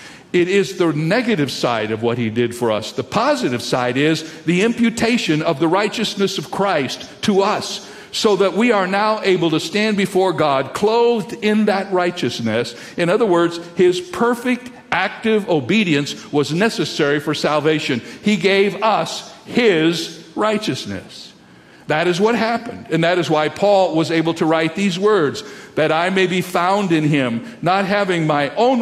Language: English